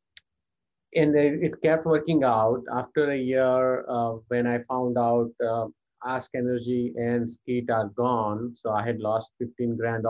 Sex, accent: male, Indian